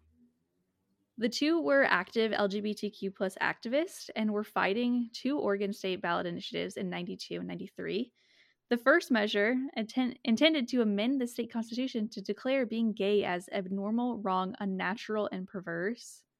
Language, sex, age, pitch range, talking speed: English, female, 10-29, 190-245 Hz, 140 wpm